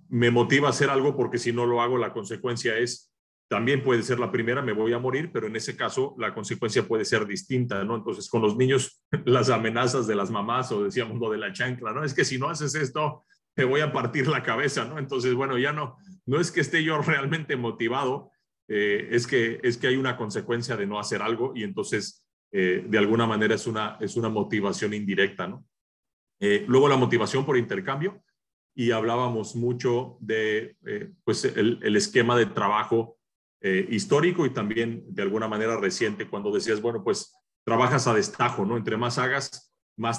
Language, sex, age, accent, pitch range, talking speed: Spanish, male, 40-59, Mexican, 115-140 Hz, 200 wpm